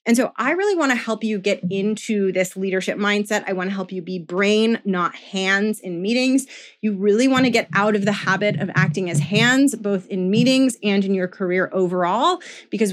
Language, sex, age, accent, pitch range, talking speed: English, female, 20-39, American, 190-225 Hz, 215 wpm